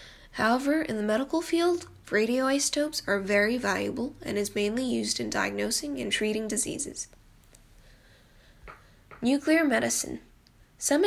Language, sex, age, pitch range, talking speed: English, female, 10-29, 210-280 Hz, 115 wpm